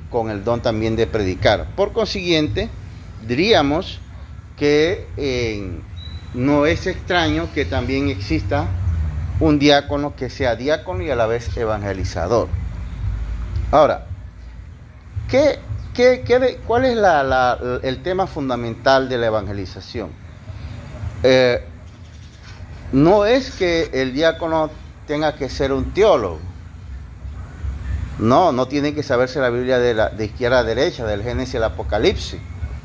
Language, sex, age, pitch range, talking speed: Spanish, male, 40-59, 95-135 Hz, 120 wpm